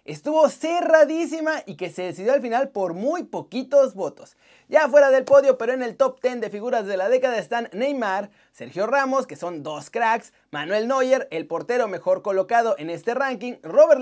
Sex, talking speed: male, 190 wpm